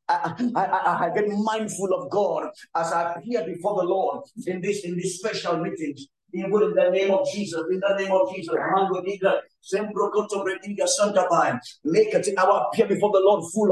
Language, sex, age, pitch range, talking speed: English, male, 50-69, 195-245 Hz, 190 wpm